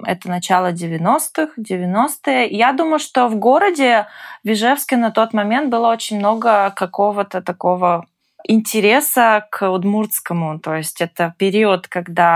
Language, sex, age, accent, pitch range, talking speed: Russian, female, 20-39, native, 180-215 Hz, 125 wpm